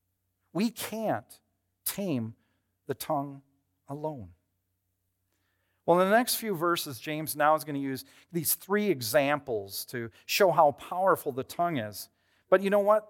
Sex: male